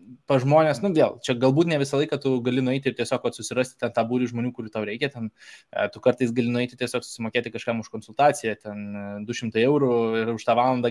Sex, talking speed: male, 215 wpm